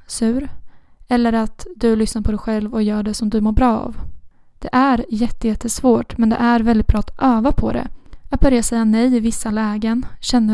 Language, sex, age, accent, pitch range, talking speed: Swedish, female, 10-29, native, 220-250 Hz, 205 wpm